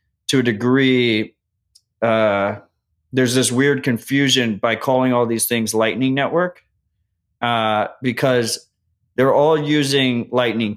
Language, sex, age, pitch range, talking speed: English, male, 30-49, 110-125 Hz, 115 wpm